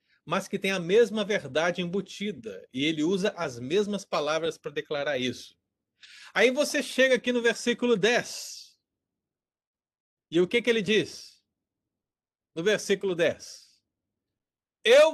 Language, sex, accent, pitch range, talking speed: Portuguese, male, Brazilian, 180-255 Hz, 130 wpm